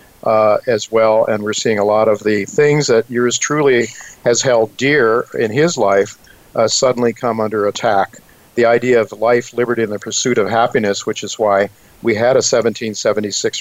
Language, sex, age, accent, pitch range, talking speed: English, male, 50-69, American, 110-130 Hz, 185 wpm